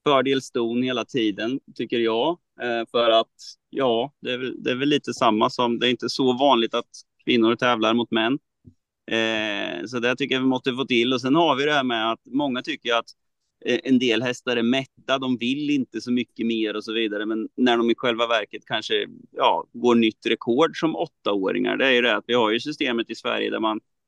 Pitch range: 115-135 Hz